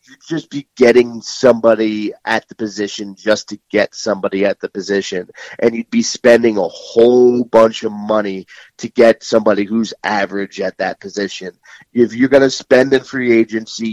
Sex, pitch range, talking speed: male, 105-125 Hz, 170 wpm